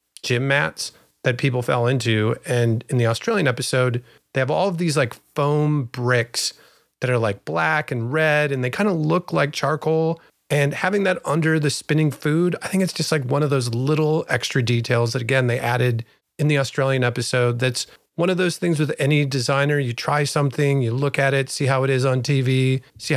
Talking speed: 205 wpm